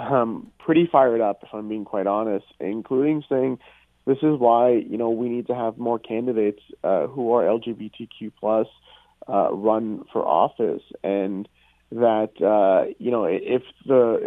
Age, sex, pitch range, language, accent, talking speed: 30-49, male, 110-130 Hz, English, American, 160 wpm